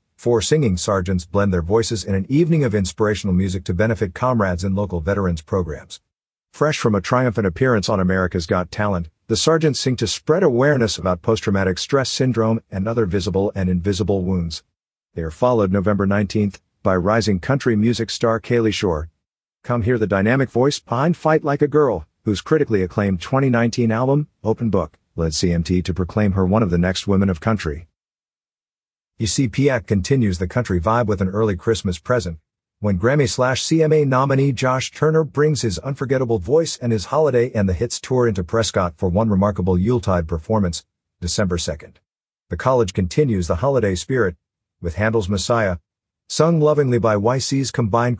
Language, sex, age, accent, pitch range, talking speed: English, male, 50-69, American, 95-125 Hz, 170 wpm